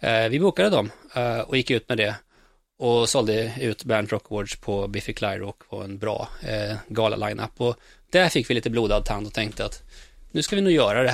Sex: male